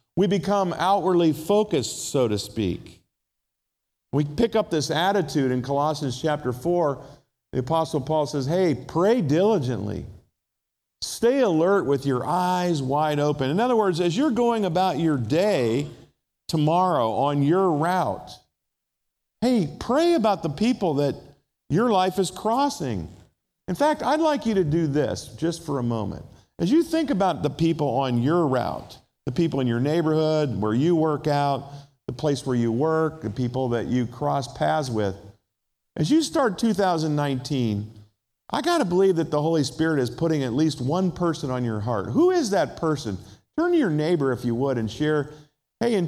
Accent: American